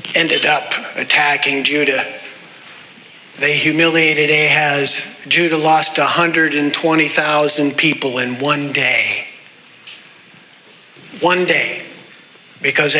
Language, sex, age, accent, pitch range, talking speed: English, male, 50-69, American, 150-160 Hz, 80 wpm